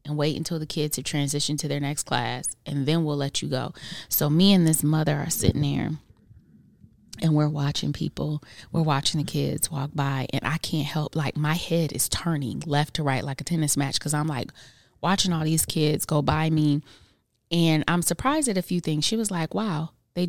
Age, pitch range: 20-39, 145-175 Hz